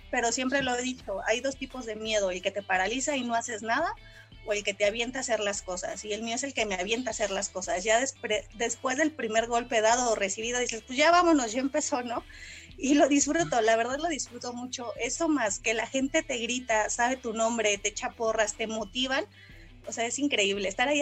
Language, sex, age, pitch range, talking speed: Spanish, female, 30-49, 220-270 Hz, 235 wpm